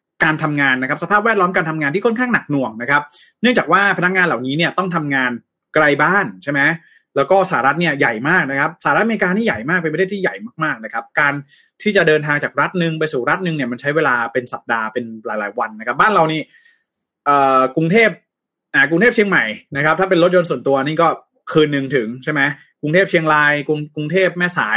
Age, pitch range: 20-39, 140-185 Hz